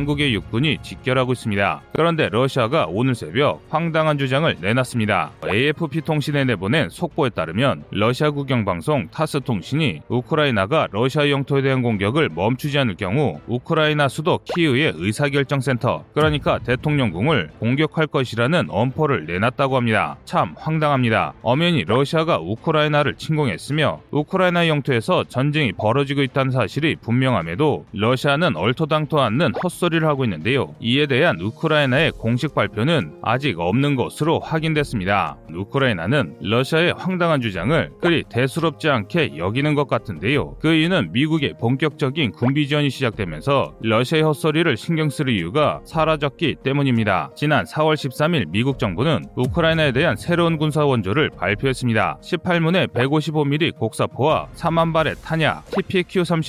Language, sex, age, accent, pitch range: Korean, male, 30-49, native, 120-155 Hz